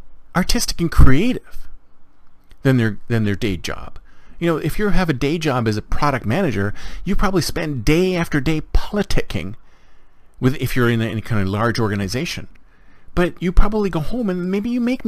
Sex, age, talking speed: male, 40-59, 185 wpm